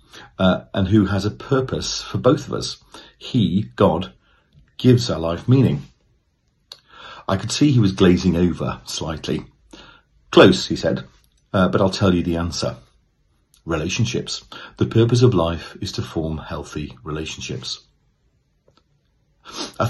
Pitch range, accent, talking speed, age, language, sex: 80-105 Hz, British, 135 wpm, 40-59, English, male